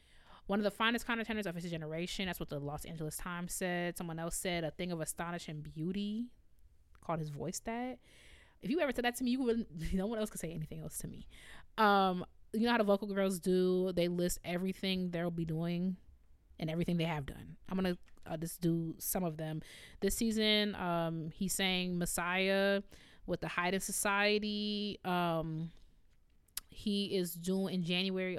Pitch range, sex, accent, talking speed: 165-200 Hz, female, American, 190 wpm